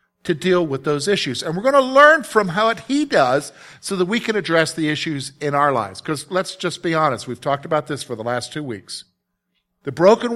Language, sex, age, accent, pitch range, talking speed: English, male, 50-69, American, 145-205 Hz, 235 wpm